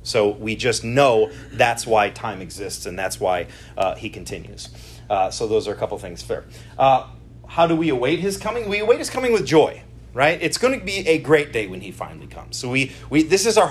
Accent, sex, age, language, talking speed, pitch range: American, male, 30-49, English, 230 wpm, 130-170 Hz